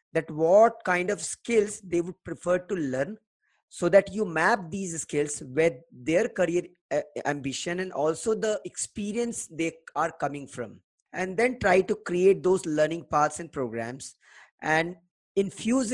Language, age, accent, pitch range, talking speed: English, 20-39, Indian, 150-195 Hz, 150 wpm